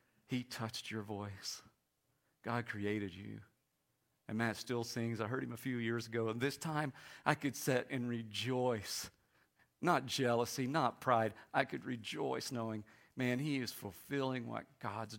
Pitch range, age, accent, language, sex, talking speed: 115-145 Hz, 50-69, American, English, male, 160 wpm